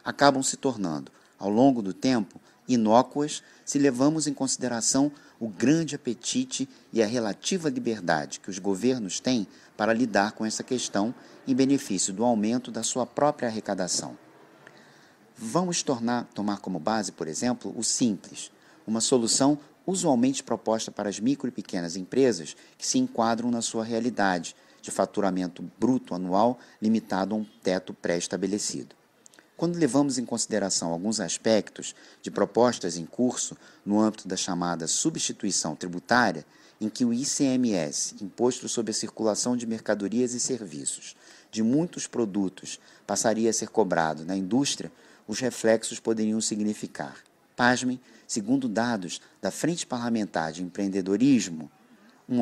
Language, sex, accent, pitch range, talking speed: Portuguese, male, Brazilian, 100-130 Hz, 135 wpm